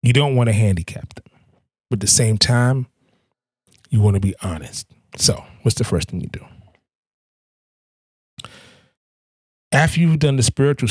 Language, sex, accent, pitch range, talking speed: English, male, American, 95-125 Hz, 155 wpm